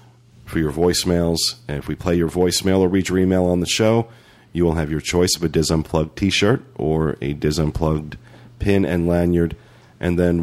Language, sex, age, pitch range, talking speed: English, male, 40-59, 80-105 Hz, 200 wpm